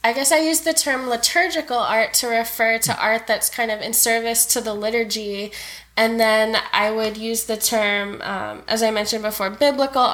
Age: 10-29